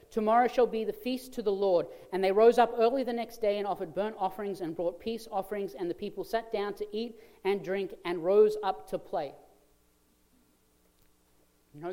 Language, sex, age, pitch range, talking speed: English, male, 40-59, 165-210 Hz, 195 wpm